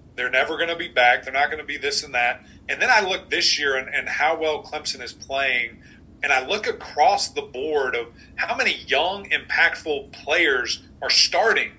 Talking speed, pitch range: 210 wpm, 135-170 Hz